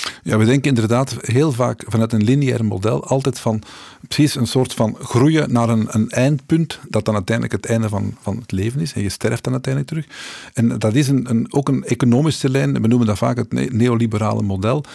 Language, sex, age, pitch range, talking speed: Dutch, male, 50-69, 110-135 Hz, 205 wpm